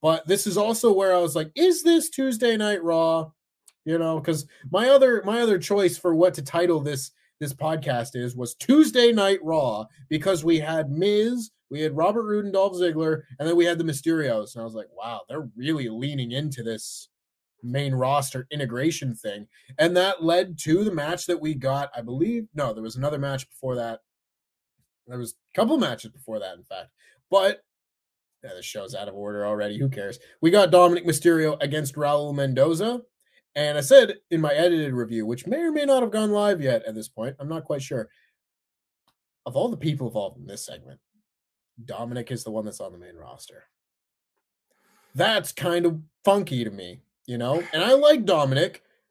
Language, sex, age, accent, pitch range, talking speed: English, male, 30-49, American, 130-190 Hz, 195 wpm